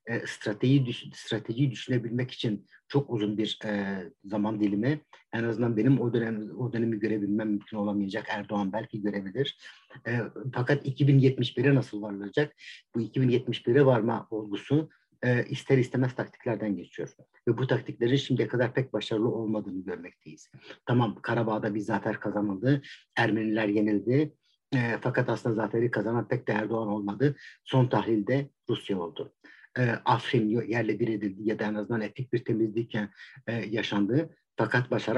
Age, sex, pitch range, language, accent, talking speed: 50-69, male, 110-125 Hz, Turkish, native, 140 wpm